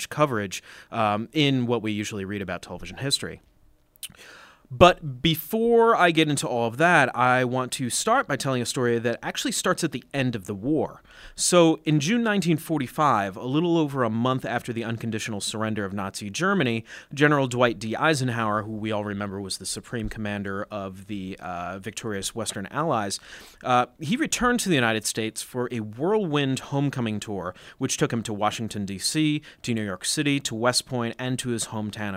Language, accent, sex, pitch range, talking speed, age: English, American, male, 105-150 Hz, 185 wpm, 30-49